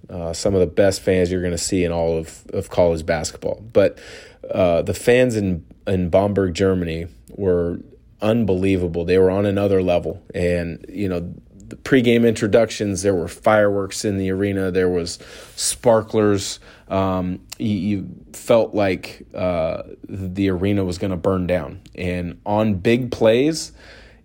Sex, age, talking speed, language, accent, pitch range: male, 30-49, 155 wpm, English, American, 90-105 Hz